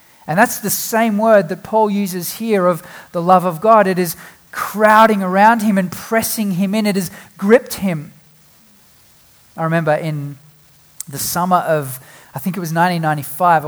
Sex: male